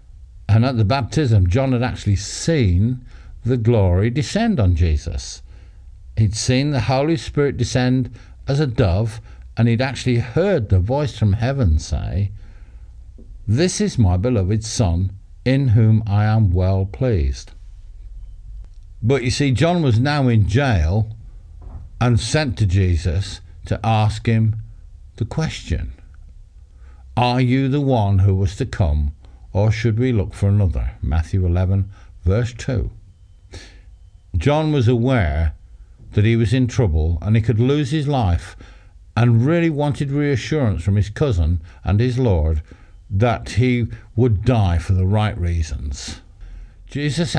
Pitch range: 90-125 Hz